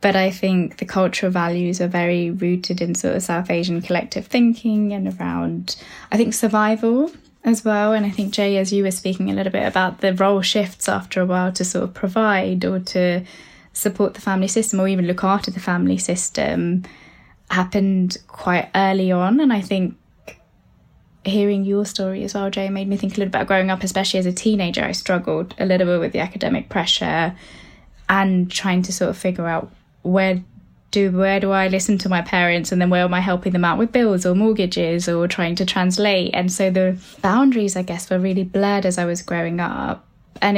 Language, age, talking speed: English, 10-29, 205 wpm